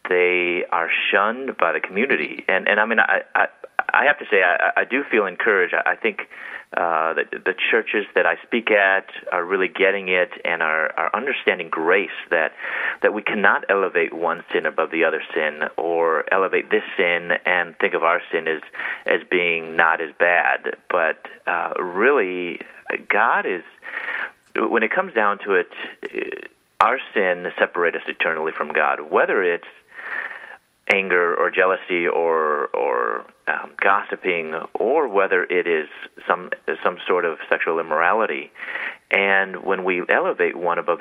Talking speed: 160 wpm